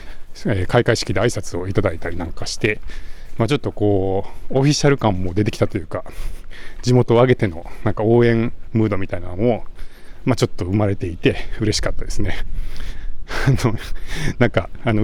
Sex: male